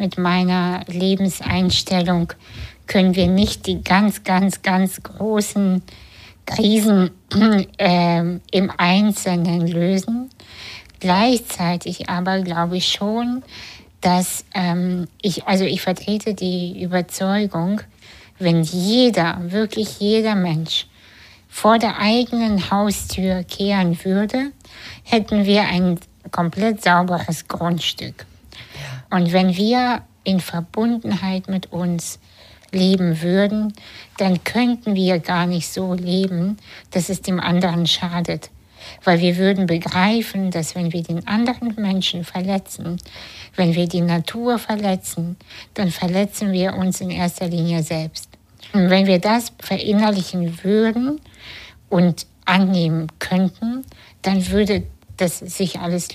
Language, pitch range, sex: German, 175-200 Hz, female